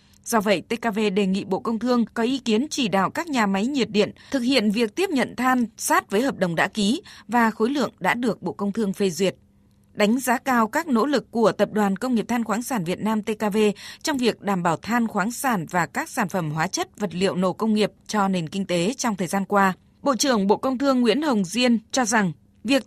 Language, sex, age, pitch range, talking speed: Vietnamese, female, 20-39, 195-245 Hz, 245 wpm